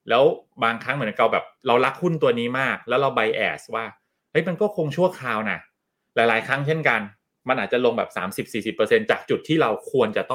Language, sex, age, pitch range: Thai, male, 20-39, 105-155 Hz